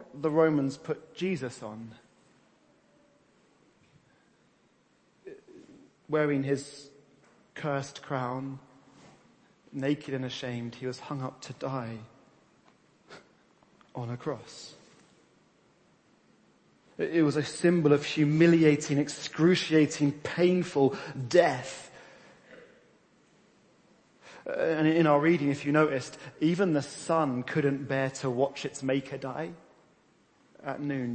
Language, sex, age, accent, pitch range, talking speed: English, male, 30-49, British, 125-150 Hz, 95 wpm